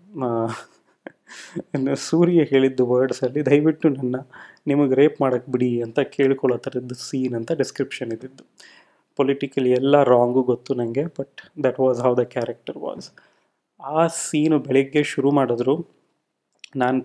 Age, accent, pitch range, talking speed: 20-39, native, 125-140 Hz, 120 wpm